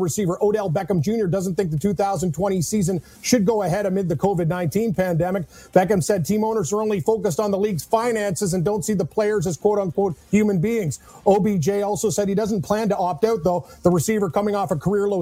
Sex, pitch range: male, 185-210 Hz